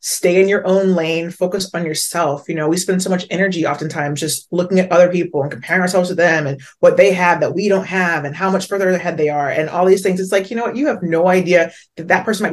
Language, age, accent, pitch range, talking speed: English, 30-49, American, 170-205 Hz, 280 wpm